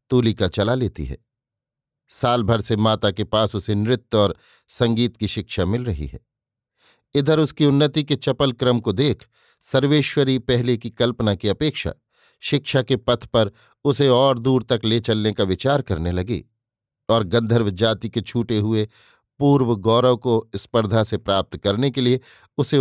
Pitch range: 110-130 Hz